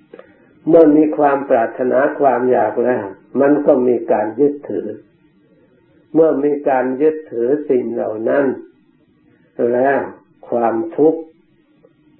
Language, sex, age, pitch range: Thai, male, 60-79, 135-160 Hz